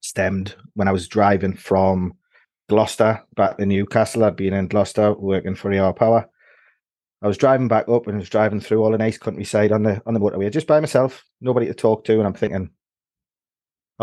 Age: 30-49